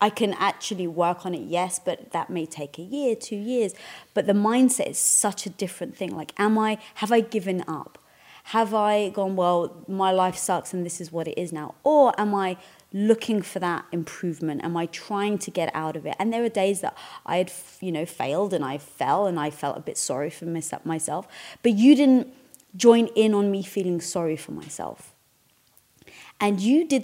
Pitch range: 170-215 Hz